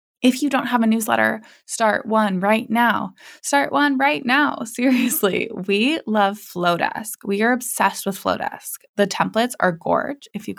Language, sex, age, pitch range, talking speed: English, female, 20-39, 190-240 Hz, 165 wpm